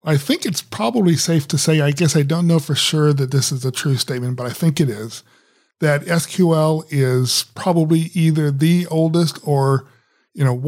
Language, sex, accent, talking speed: English, male, American, 195 wpm